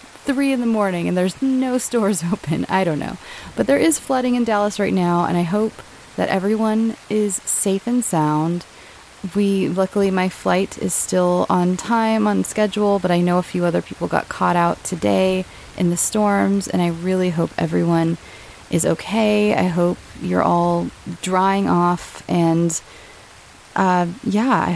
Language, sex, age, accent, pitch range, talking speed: English, female, 20-39, American, 175-235 Hz, 170 wpm